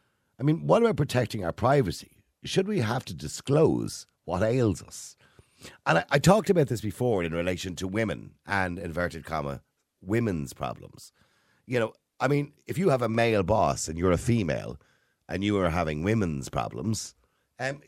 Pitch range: 85-130 Hz